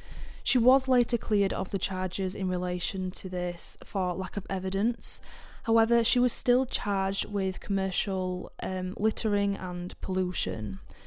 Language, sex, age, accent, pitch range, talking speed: English, female, 10-29, British, 185-220 Hz, 140 wpm